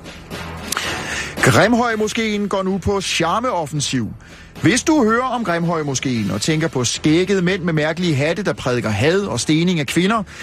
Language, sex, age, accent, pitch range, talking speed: Danish, male, 30-49, native, 150-200 Hz, 155 wpm